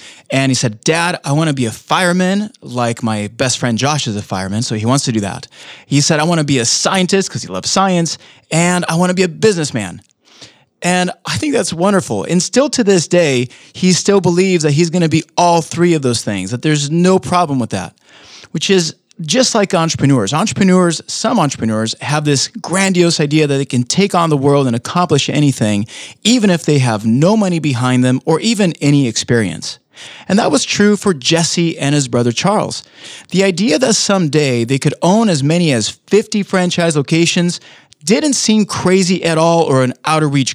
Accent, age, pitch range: American, 30-49, 130-180 Hz